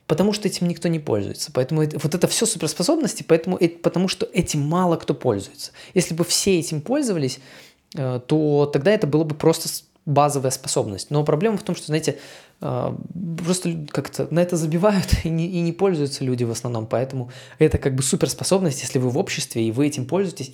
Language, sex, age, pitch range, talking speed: Russian, male, 20-39, 135-170 Hz, 180 wpm